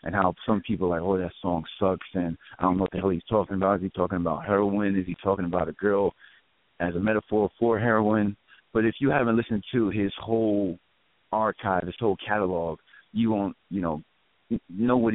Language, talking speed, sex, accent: English, 215 wpm, male, American